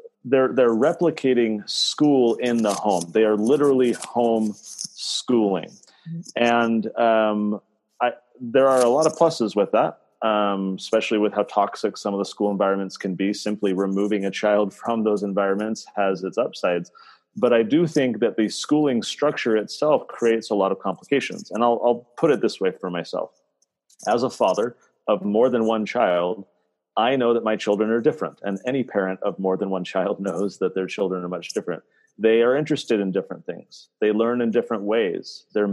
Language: English